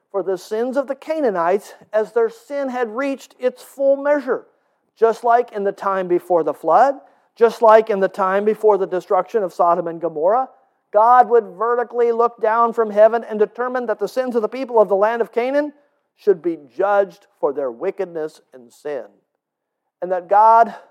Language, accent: English, American